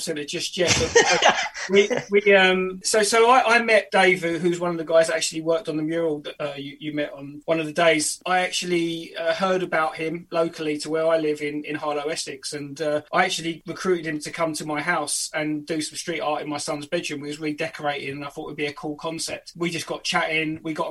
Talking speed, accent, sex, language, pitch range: 245 wpm, British, male, English, 150-175 Hz